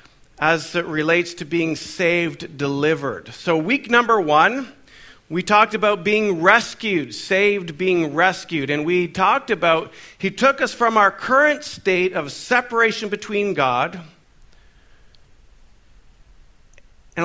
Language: English